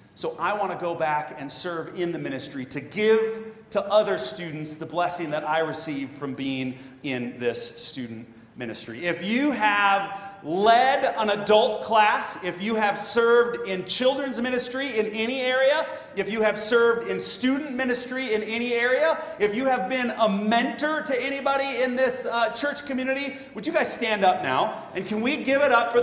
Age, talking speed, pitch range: 30-49, 185 wpm, 155-245 Hz